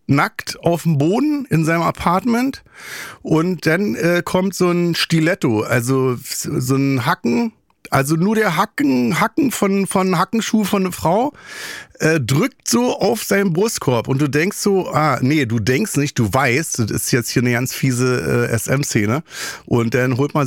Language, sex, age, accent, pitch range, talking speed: German, male, 50-69, German, 130-200 Hz, 175 wpm